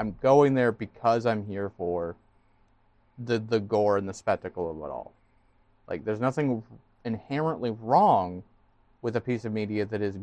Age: 30-49